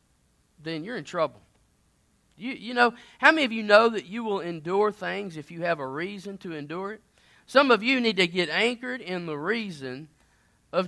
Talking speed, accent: 200 wpm, American